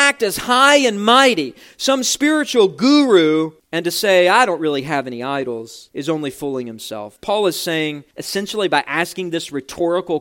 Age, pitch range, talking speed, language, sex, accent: 40-59, 170-240 Hz, 170 wpm, English, male, American